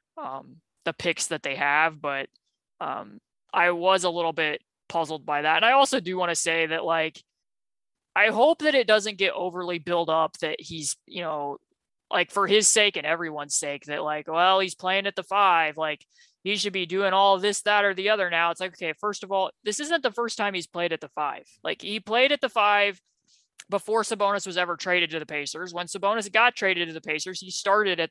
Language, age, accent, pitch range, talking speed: English, 20-39, American, 165-205 Hz, 225 wpm